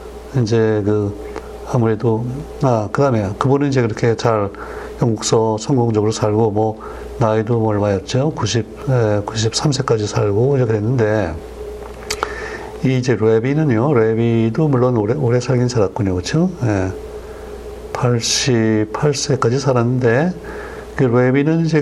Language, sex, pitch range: Korean, male, 110-135 Hz